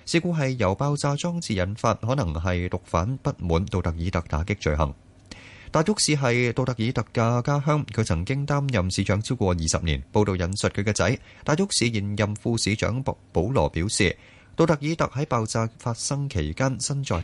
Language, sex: Chinese, male